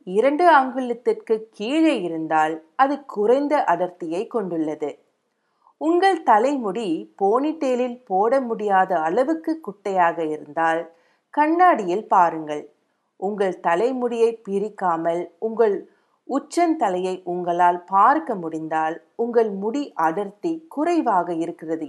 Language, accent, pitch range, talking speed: Tamil, native, 175-295 Hz, 85 wpm